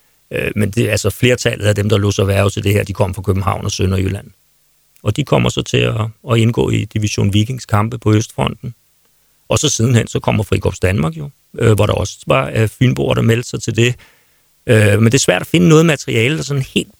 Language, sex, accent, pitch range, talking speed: Danish, male, native, 105-125 Hz, 230 wpm